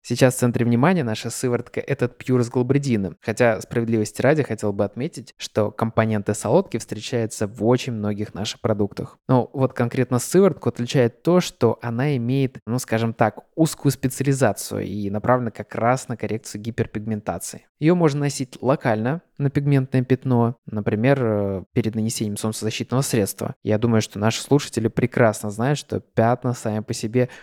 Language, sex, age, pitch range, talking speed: Russian, male, 20-39, 110-130 Hz, 155 wpm